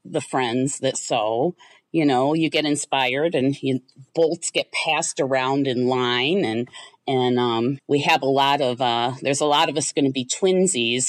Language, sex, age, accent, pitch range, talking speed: English, female, 40-59, American, 135-170 Hz, 185 wpm